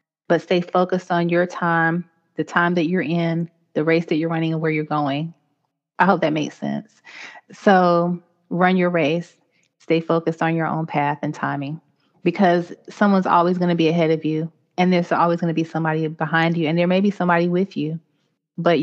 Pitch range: 155-170 Hz